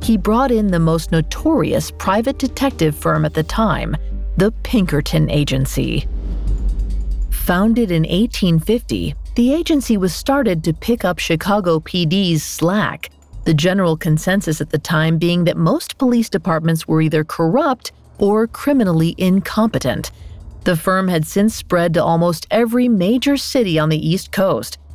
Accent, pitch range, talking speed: American, 160-220 Hz, 140 wpm